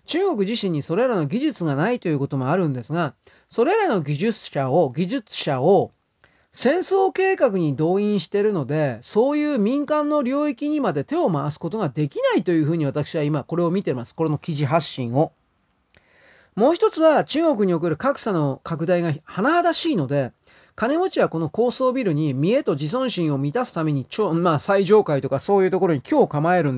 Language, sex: Japanese, male